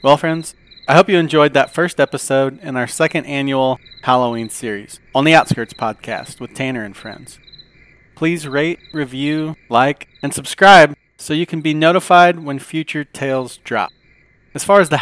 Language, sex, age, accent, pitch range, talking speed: English, male, 40-59, American, 130-160 Hz, 170 wpm